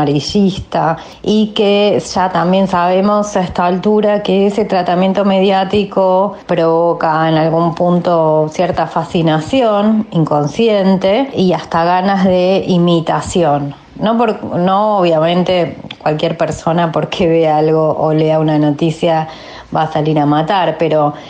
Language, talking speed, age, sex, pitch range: Spanish, 120 wpm, 20-39, female, 160-195 Hz